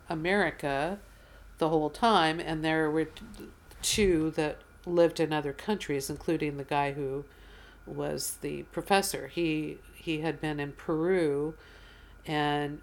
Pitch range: 150-180 Hz